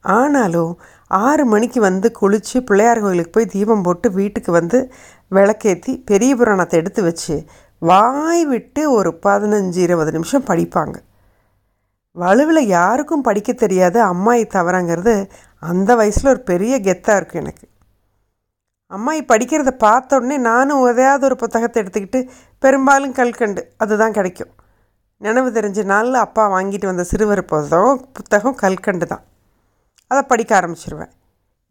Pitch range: 170-240 Hz